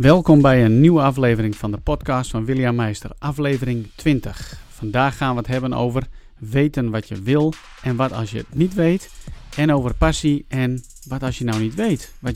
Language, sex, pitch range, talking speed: Dutch, male, 115-140 Hz, 200 wpm